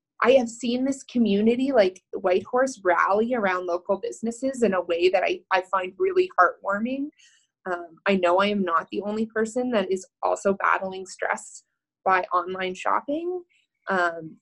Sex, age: female, 20-39